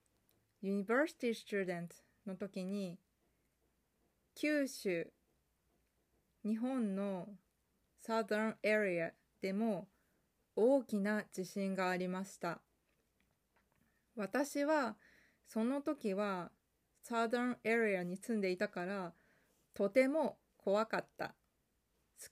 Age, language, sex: 20-39, Japanese, female